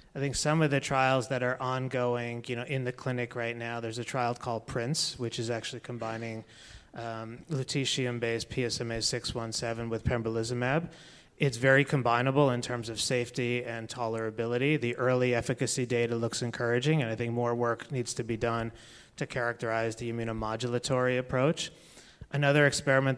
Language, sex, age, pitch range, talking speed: English, male, 30-49, 115-130 Hz, 165 wpm